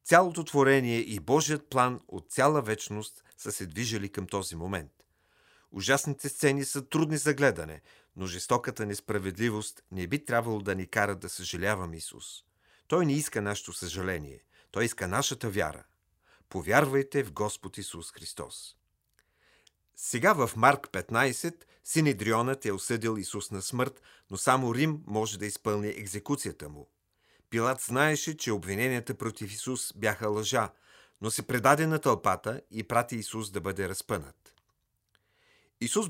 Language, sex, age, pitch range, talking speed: Bulgarian, male, 40-59, 100-130 Hz, 140 wpm